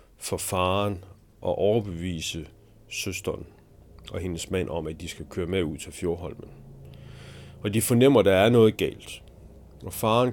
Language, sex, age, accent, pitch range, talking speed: Danish, male, 30-49, native, 85-105 Hz, 155 wpm